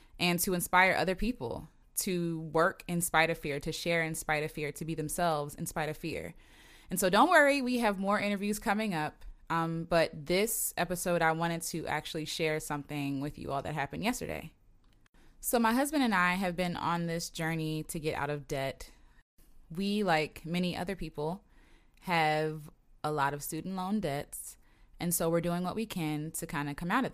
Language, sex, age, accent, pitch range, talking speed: English, female, 20-39, American, 155-185 Hz, 200 wpm